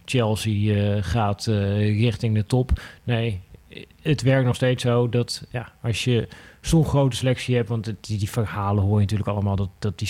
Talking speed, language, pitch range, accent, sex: 190 wpm, Dutch, 105-125 Hz, Dutch, male